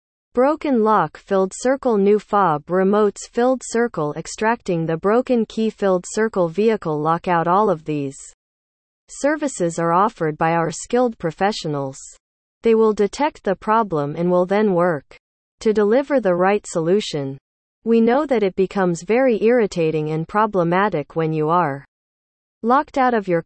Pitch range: 165-230 Hz